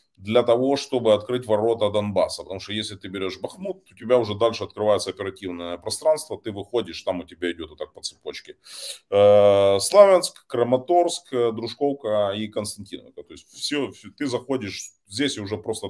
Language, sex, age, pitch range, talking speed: Russian, male, 30-49, 100-135 Hz, 160 wpm